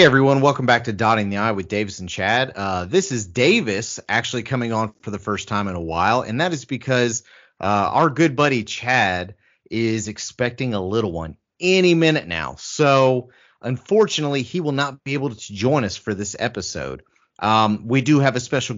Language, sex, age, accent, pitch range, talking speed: English, male, 30-49, American, 110-140 Hz, 200 wpm